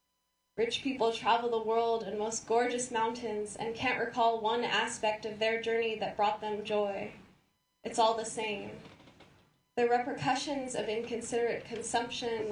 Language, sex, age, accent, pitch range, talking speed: English, female, 10-29, American, 210-235 Hz, 145 wpm